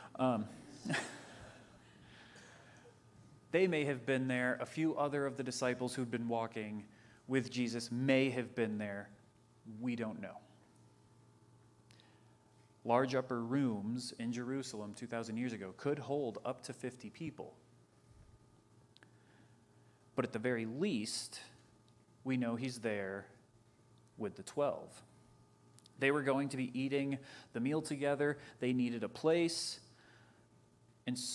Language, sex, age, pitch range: English, male, 30-49, 110-130 Hz